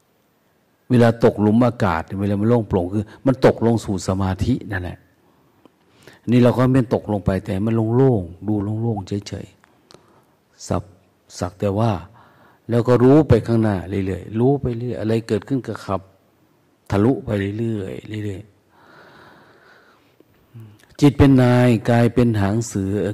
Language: Thai